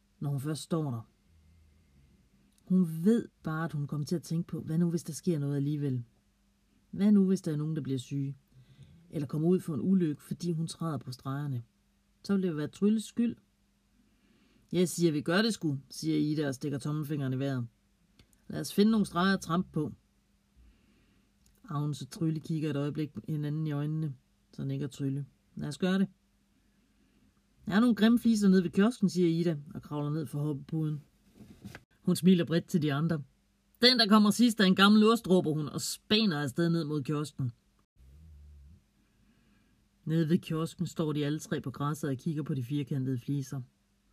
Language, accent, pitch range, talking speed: Danish, native, 135-170 Hz, 190 wpm